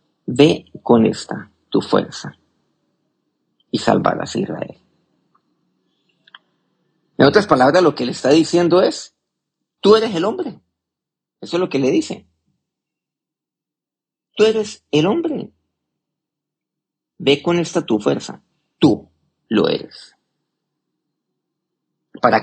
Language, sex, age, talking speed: Spanish, male, 50-69, 110 wpm